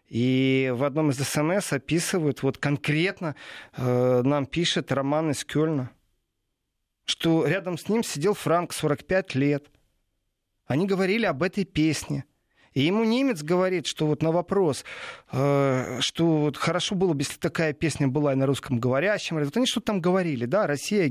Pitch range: 140-195 Hz